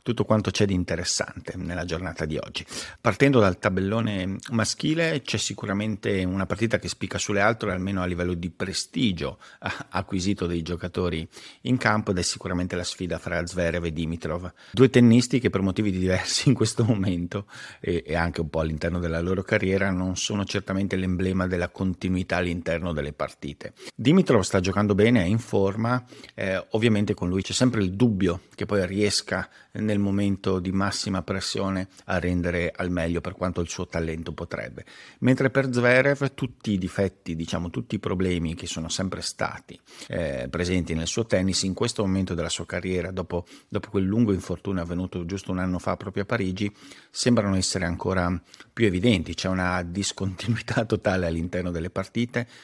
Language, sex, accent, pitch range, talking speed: Italian, male, native, 85-105 Hz, 170 wpm